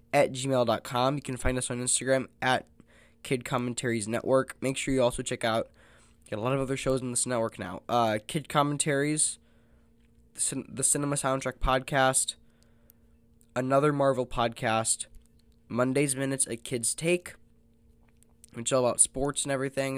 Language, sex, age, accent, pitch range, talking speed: English, male, 10-29, American, 115-135 Hz, 155 wpm